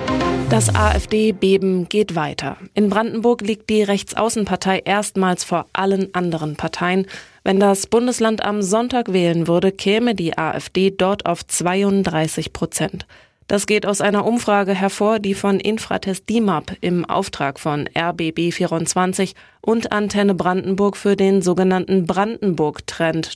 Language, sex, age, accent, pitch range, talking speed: German, female, 20-39, German, 175-210 Hz, 125 wpm